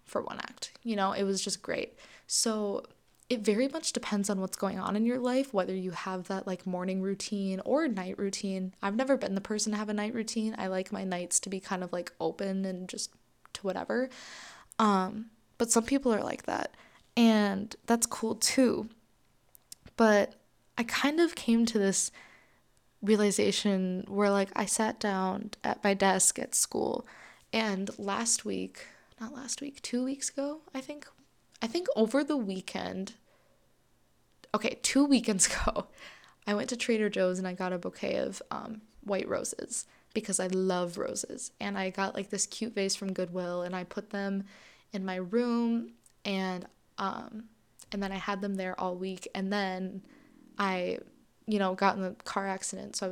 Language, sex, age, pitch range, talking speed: English, female, 20-39, 190-230 Hz, 180 wpm